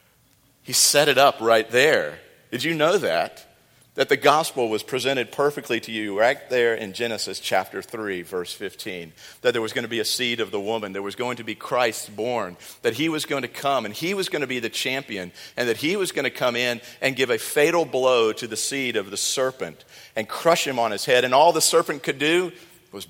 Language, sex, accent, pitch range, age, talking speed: English, male, American, 110-145 Hz, 50-69, 235 wpm